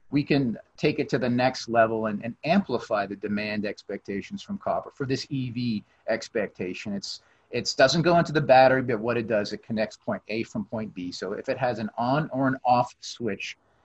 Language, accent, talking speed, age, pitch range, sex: English, American, 210 wpm, 40-59, 115-140 Hz, male